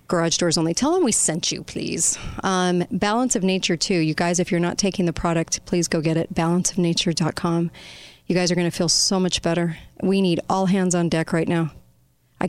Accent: American